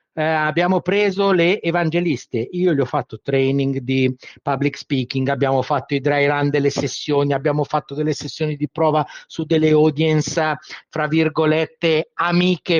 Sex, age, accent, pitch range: male, 50-69, native, 155-205 Hz